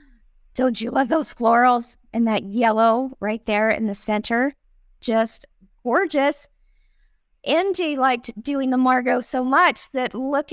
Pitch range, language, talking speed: 225-275 Hz, English, 135 wpm